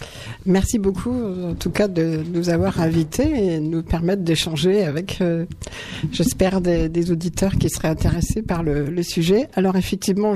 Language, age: French, 60-79